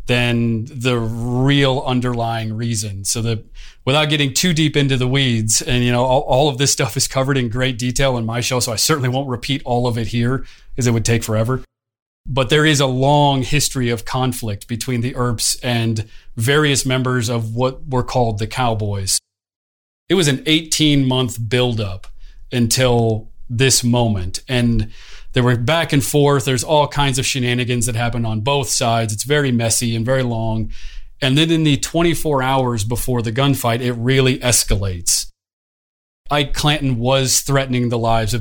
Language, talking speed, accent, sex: English, 175 wpm, American, male